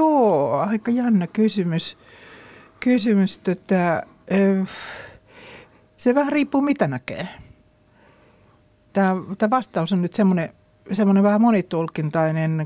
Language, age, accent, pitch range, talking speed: Finnish, 60-79, native, 165-205 Hz, 90 wpm